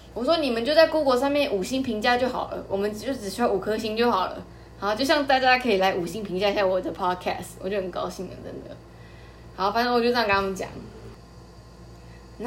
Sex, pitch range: female, 195-245 Hz